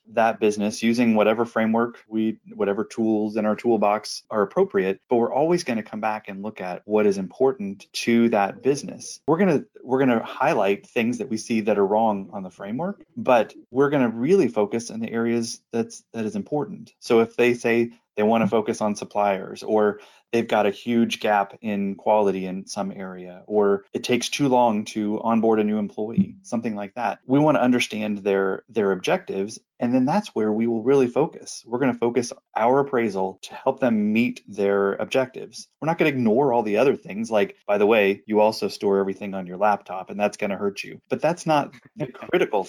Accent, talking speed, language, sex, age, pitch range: American, 210 wpm, English, male, 30-49, 105-125 Hz